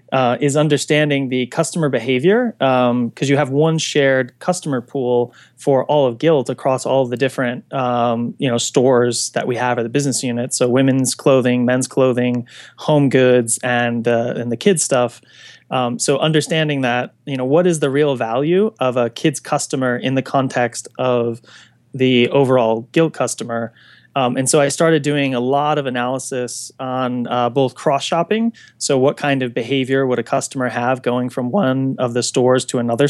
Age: 20-39